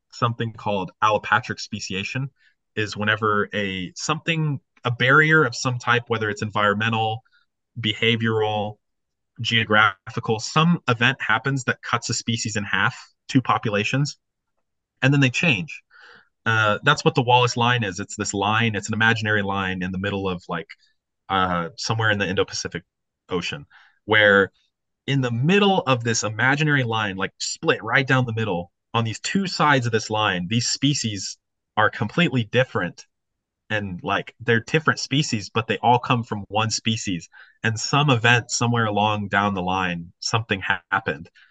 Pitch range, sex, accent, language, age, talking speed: 105-125 Hz, male, American, English, 30-49, 155 wpm